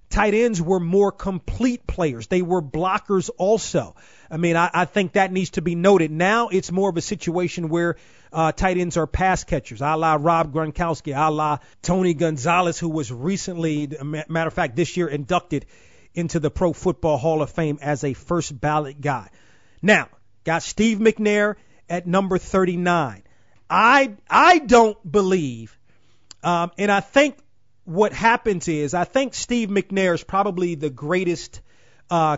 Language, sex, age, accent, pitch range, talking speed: English, male, 40-59, American, 150-190 Hz, 165 wpm